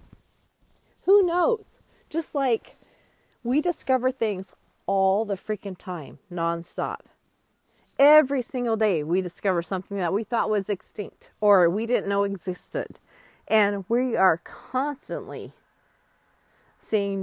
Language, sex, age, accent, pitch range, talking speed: English, female, 40-59, American, 180-250 Hz, 115 wpm